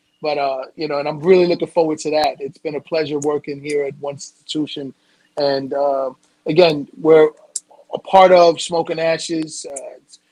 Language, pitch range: English, 145-170 Hz